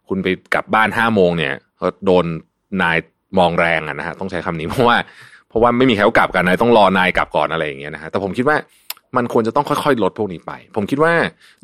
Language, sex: Thai, male